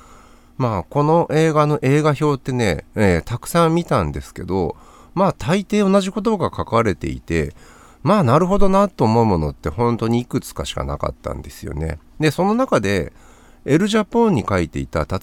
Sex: male